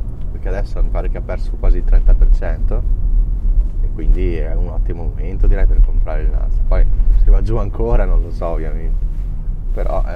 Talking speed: 175 wpm